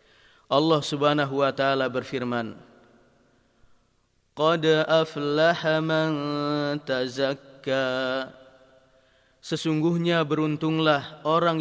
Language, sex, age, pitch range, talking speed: Indonesian, male, 30-49, 130-155 Hz, 60 wpm